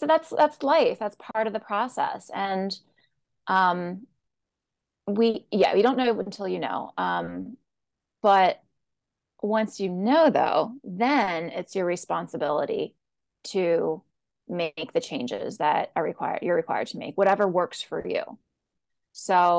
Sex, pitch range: female, 180-220 Hz